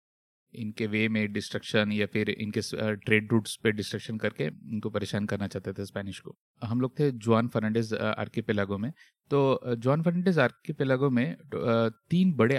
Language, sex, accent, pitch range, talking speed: Hindi, male, native, 110-145 Hz, 155 wpm